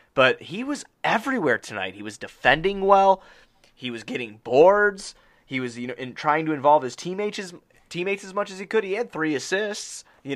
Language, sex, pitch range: English, male, 115-160 Hz